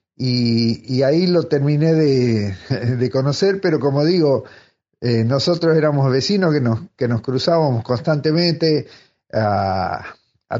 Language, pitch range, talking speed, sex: Spanish, 110-145 Hz, 130 wpm, male